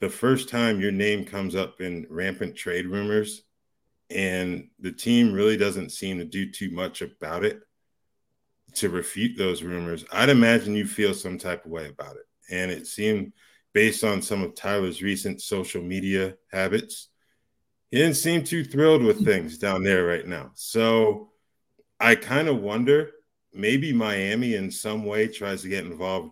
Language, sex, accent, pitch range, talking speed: English, male, American, 90-110 Hz, 170 wpm